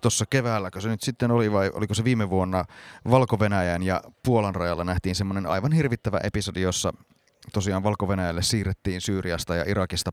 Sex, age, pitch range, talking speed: male, 30-49, 95-125 Hz, 160 wpm